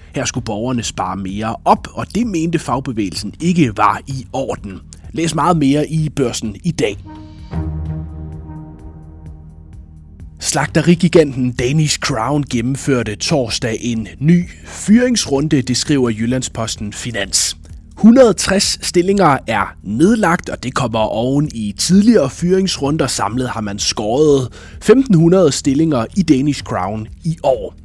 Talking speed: 120 wpm